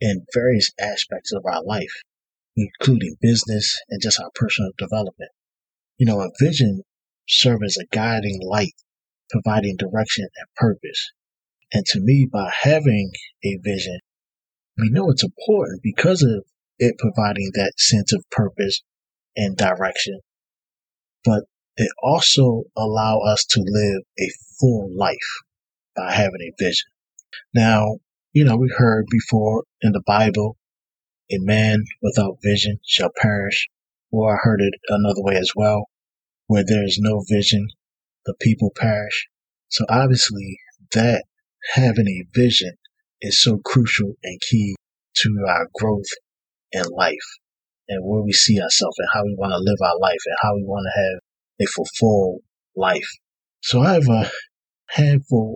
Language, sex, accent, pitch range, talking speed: English, male, American, 100-115 Hz, 145 wpm